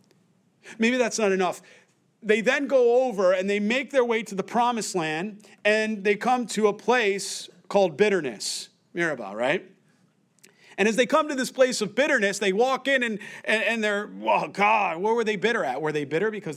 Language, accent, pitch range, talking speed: English, American, 180-215 Hz, 200 wpm